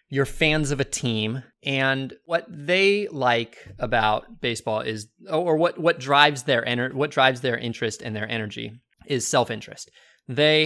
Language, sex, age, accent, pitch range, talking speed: English, male, 20-39, American, 115-150 Hz, 160 wpm